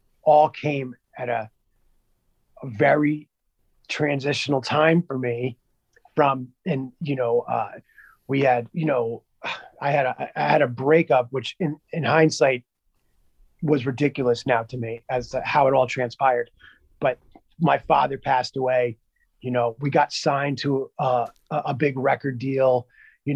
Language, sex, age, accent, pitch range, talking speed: English, male, 30-49, American, 125-145 Hz, 150 wpm